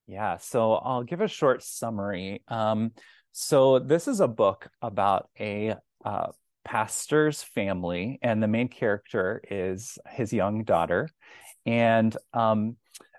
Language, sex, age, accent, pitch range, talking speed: English, male, 30-49, American, 105-125 Hz, 125 wpm